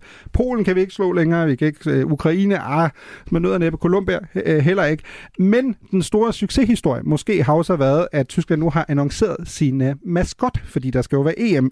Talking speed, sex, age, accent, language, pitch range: 200 wpm, male, 30-49, native, Danish, 135-190 Hz